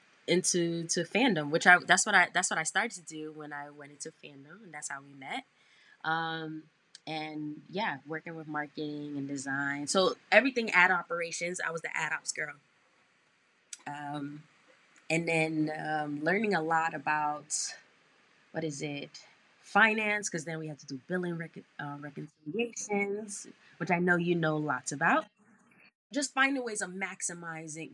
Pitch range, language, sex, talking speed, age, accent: 150-185 Hz, English, female, 165 wpm, 20-39, American